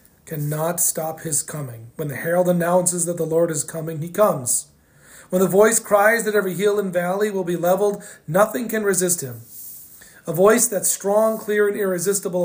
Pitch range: 160-205 Hz